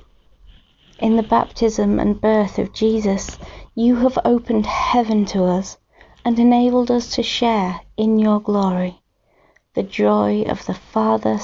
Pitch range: 185-230 Hz